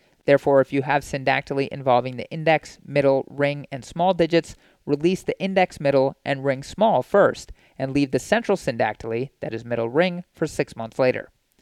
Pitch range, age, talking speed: 130-170 Hz, 30-49, 175 wpm